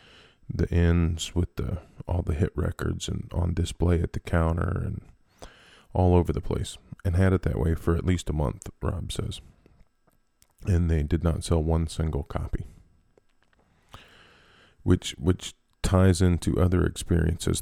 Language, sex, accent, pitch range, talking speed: English, male, American, 80-90 Hz, 155 wpm